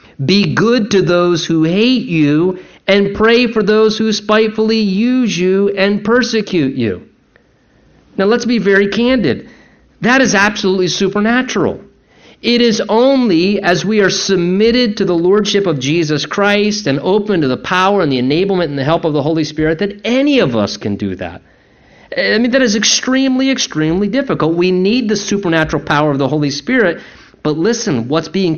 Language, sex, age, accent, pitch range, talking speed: English, male, 50-69, American, 145-205 Hz, 170 wpm